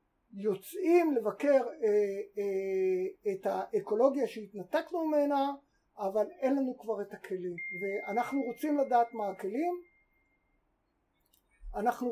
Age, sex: 50-69, male